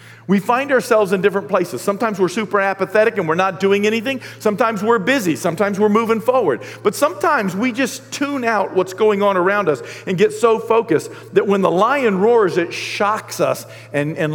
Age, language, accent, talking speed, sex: 50-69, English, American, 195 wpm, male